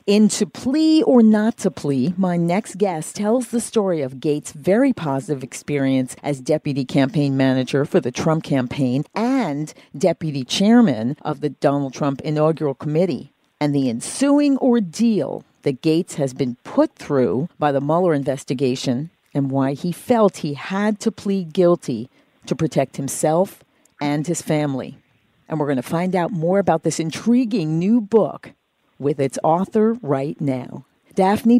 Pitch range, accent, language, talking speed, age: 145-210 Hz, American, English, 155 wpm, 50-69